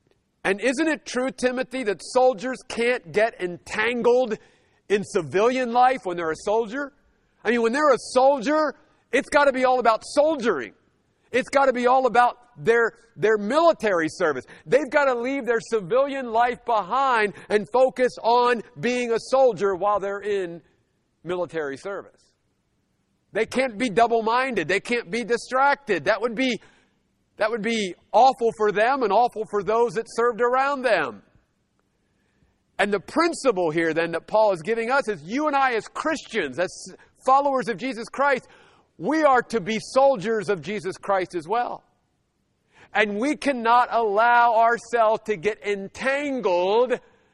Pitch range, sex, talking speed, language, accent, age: 210-260 Hz, male, 155 wpm, English, American, 50-69